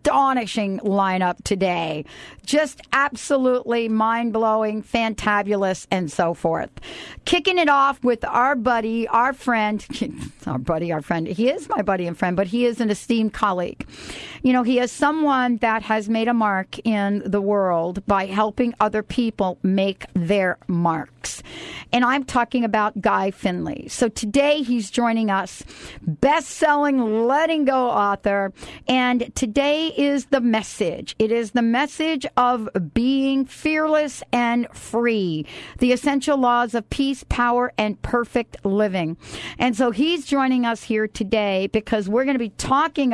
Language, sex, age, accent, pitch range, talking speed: English, female, 50-69, American, 200-255 Hz, 145 wpm